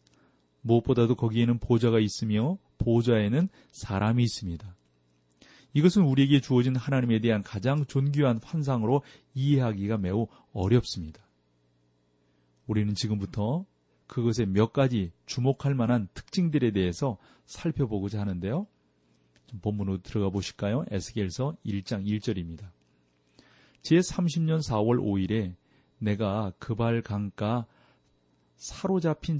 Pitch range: 95-135 Hz